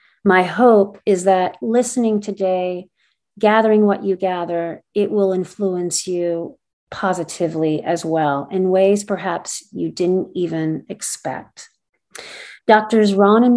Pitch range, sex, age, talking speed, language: 170-205 Hz, female, 40-59, 120 wpm, English